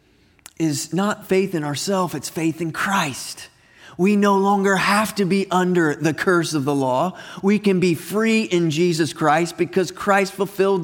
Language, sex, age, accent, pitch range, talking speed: English, male, 30-49, American, 150-195 Hz, 170 wpm